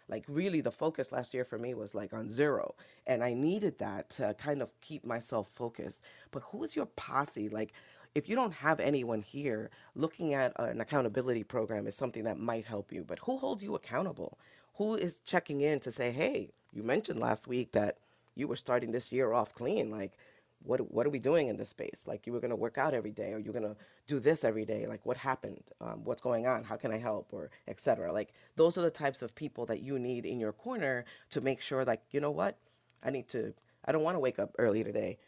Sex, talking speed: female, 235 wpm